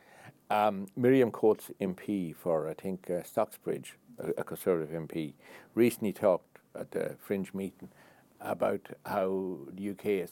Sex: male